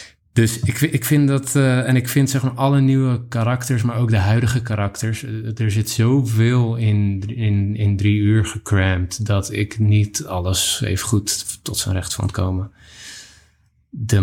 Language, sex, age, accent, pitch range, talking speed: Dutch, male, 20-39, Dutch, 95-115 Hz, 170 wpm